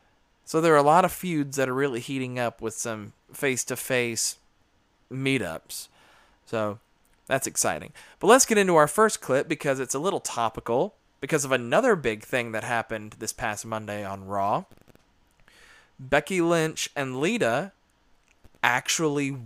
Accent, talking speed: American, 150 wpm